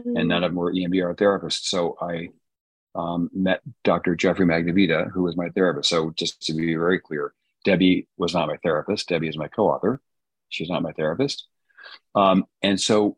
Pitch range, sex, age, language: 85-95 Hz, male, 40-59, English